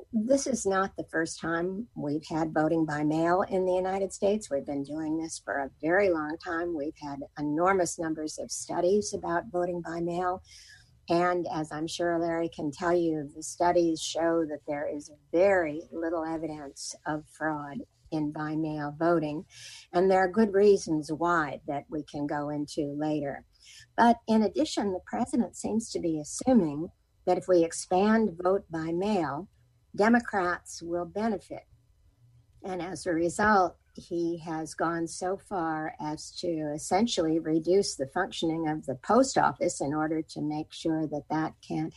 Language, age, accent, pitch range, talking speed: English, 50-69, American, 155-195 Hz, 165 wpm